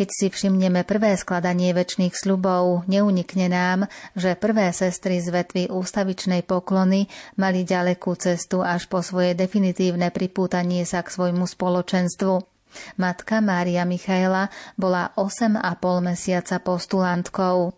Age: 30-49